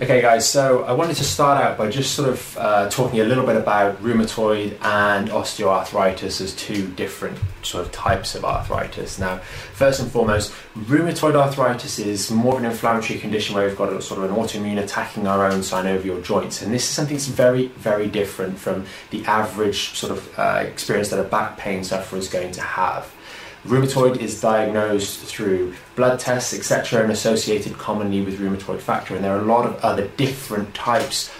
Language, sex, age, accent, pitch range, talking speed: English, male, 20-39, British, 100-120 Hz, 190 wpm